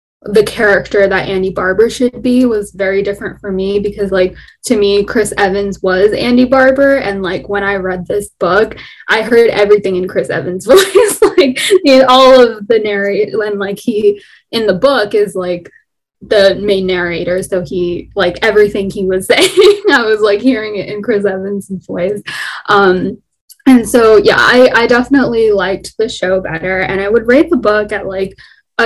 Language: English